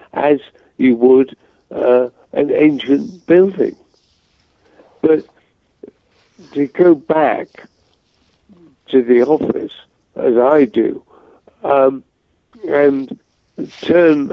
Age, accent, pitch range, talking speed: 60-79, British, 130-155 Hz, 85 wpm